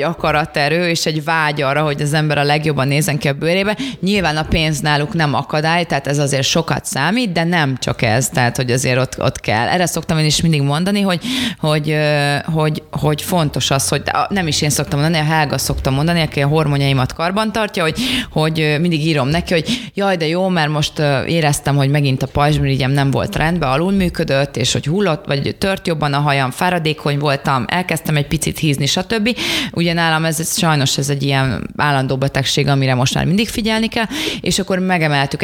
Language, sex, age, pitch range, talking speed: Hungarian, female, 20-39, 145-180 Hz, 195 wpm